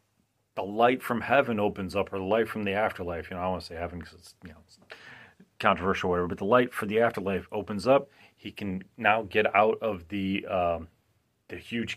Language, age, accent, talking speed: English, 30-49, American, 230 wpm